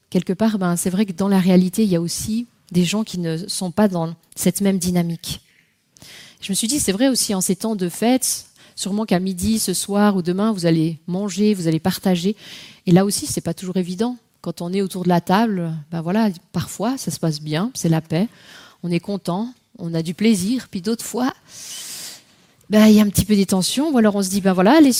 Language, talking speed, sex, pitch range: French, 240 wpm, female, 175-215 Hz